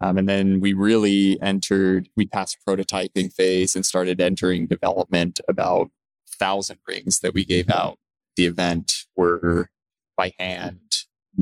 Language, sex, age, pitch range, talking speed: English, male, 20-39, 90-100 Hz, 140 wpm